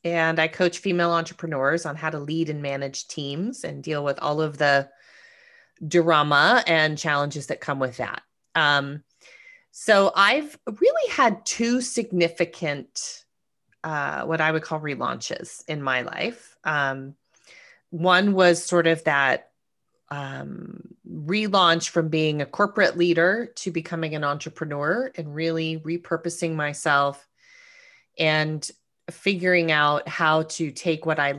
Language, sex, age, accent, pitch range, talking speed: English, female, 30-49, American, 150-185 Hz, 135 wpm